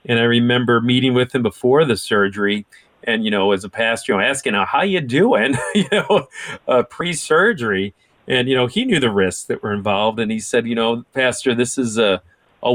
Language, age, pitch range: English, 40-59, 115-140 Hz